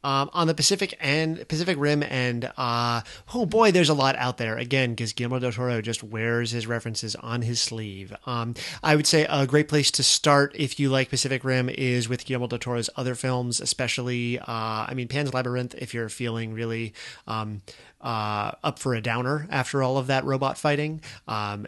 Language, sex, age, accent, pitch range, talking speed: English, male, 30-49, American, 115-140 Hz, 200 wpm